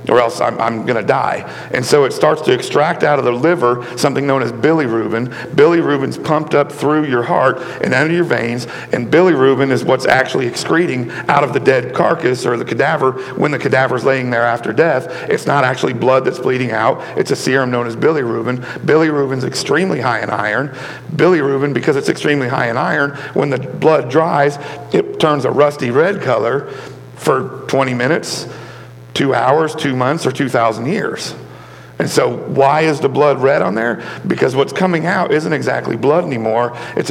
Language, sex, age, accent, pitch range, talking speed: English, male, 50-69, American, 115-155 Hz, 185 wpm